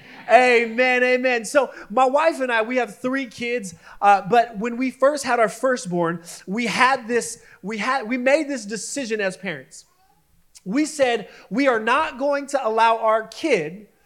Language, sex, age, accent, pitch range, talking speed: English, male, 30-49, American, 220-285 Hz, 170 wpm